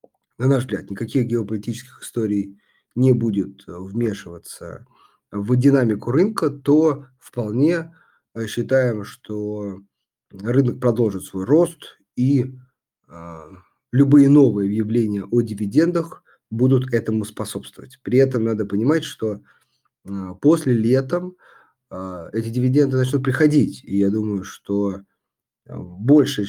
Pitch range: 100-140 Hz